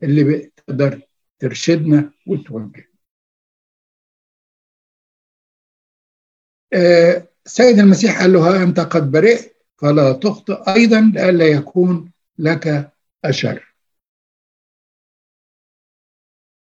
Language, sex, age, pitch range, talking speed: Arabic, male, 60-79, 150-195 Hz, 70 wpm